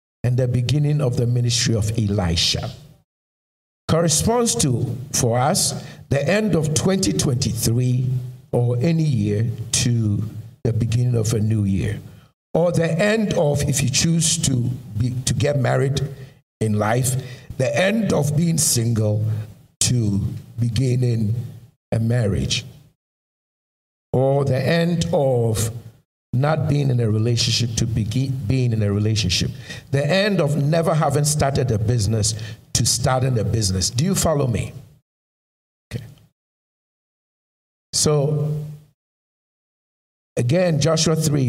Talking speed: 120 wpm